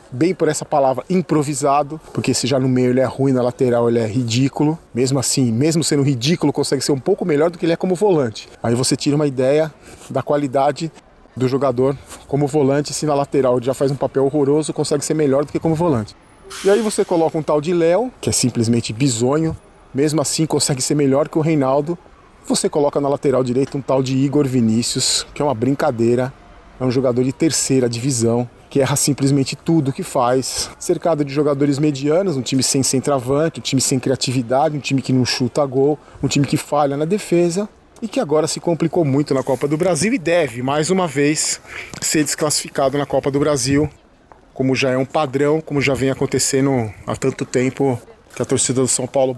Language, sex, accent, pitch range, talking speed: Portuguese, male, Brazilian, 130-155 Hz, 205 wpm